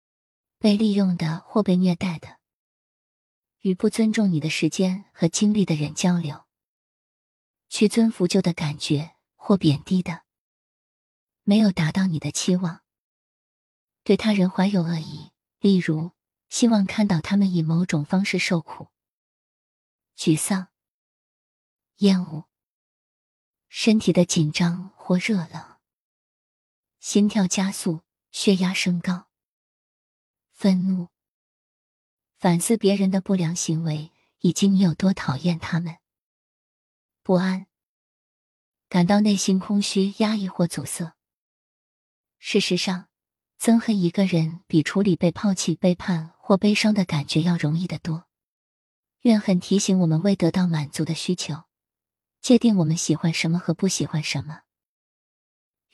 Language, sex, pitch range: Chinese, female, 165-195 Hz